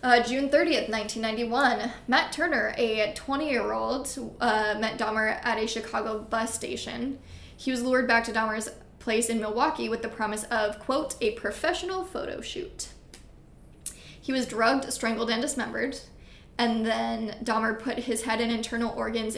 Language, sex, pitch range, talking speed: English, female, 215-250 Hz, 150 wpm